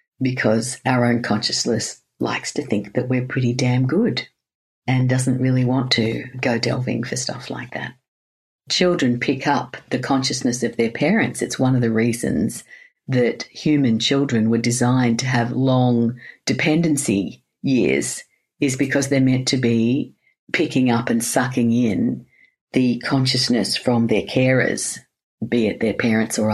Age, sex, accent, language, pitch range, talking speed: 50-69, female, Australian, English, 115-130 Hz, 150 wpm